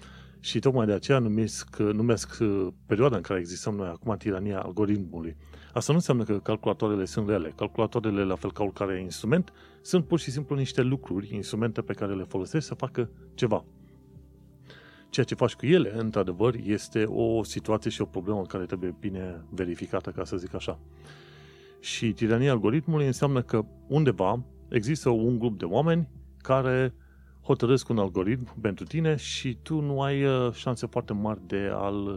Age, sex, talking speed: 30-49, male, 160 wpm